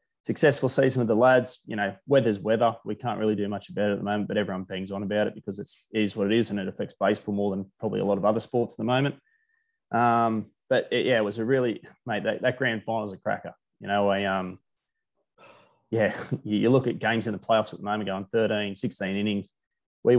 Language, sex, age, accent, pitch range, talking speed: English, male, 20-39, Australian, 95-115 Hz, 245 wpm